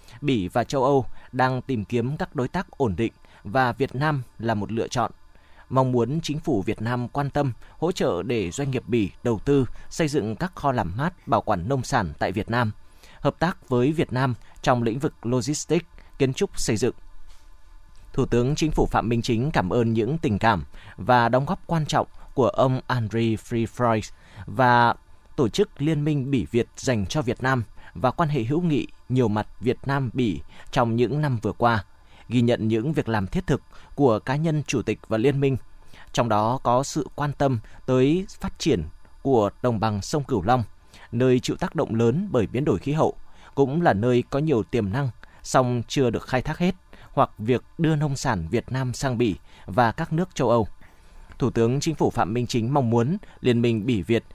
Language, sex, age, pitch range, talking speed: Vietnamese, male, 20-39, 110-140 Hz, 210 wpm